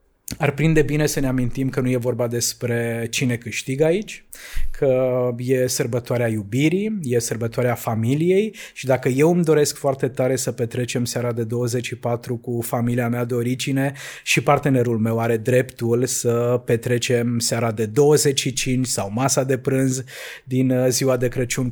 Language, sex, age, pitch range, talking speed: Romanian, male, 20-39, 120-135 Hz, 155 wpm